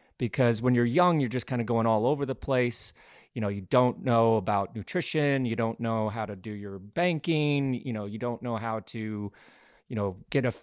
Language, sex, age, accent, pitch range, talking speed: English, male, 30-49, American, 110-140 Hz, 220 wpm